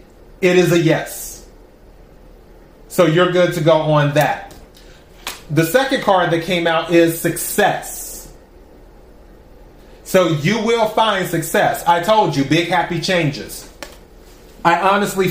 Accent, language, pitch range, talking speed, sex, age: American, English, 150-180 Hz, 125 wpm, male, 30-49